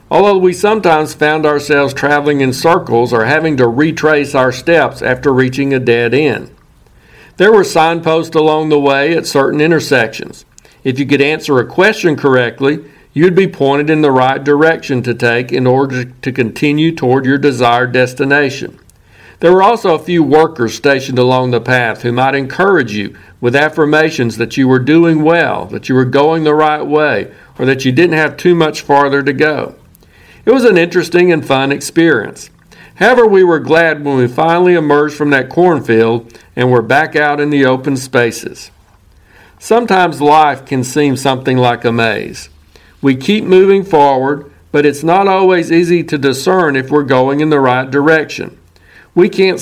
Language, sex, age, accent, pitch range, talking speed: English, male, 60-79, American, 130-160 Hz, 175 wpm